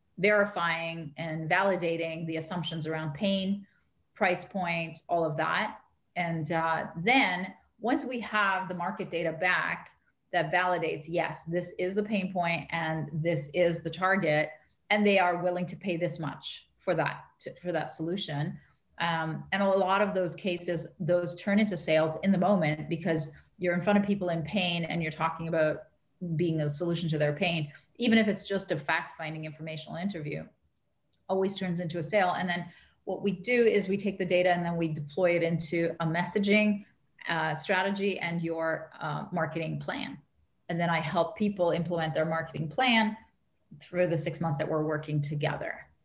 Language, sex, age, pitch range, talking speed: English, female, 30-49, 160-195 Hz, 180 wpm